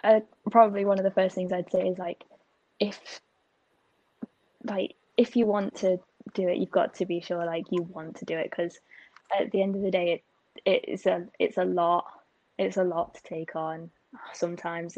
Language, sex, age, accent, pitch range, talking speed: English, female, 10-29, British, 170-200 Hz, 205 wpm